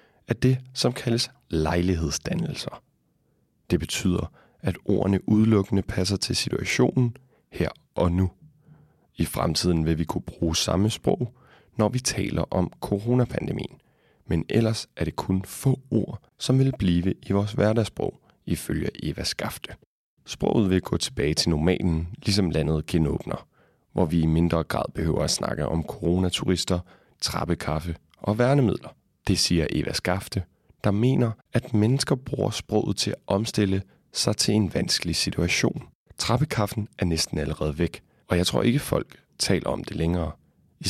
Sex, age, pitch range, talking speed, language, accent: male, 30-49, 85-115 Hz, 145 wpm, Danish, native